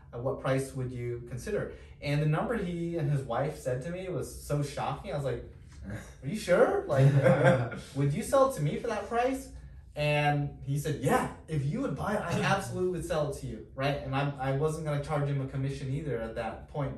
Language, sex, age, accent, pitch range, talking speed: English, male, 20-39, American, 120-145 Hz, 230 wpm